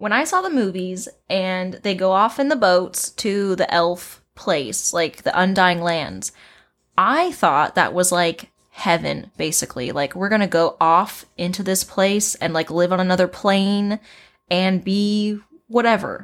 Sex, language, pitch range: female, English, 185-230 Hz